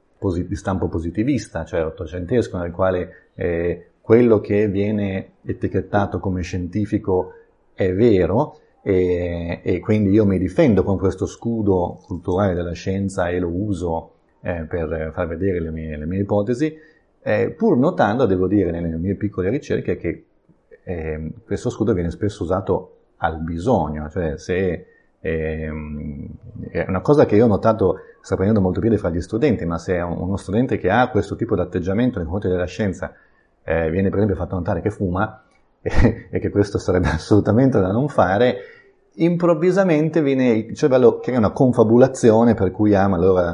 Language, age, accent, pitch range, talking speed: Italian, 30-49, native, 85-110 Hz, 160 wpm